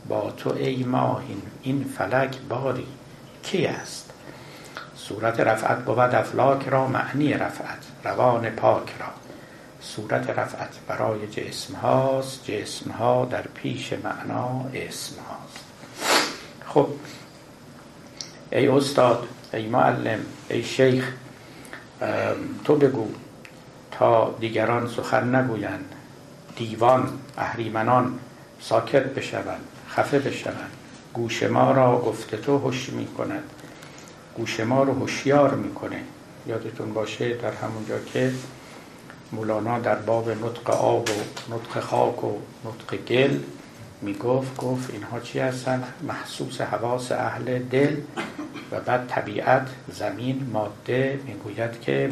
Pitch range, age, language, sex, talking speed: 115-135 Hz, 60-79, Persian, male, 105 wpm